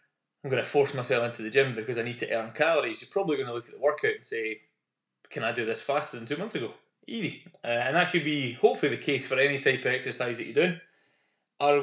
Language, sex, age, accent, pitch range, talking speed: English, male, 20-39, British, 125-170 Hz, 260 wpm